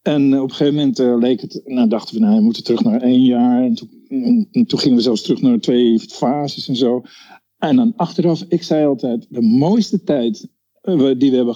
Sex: male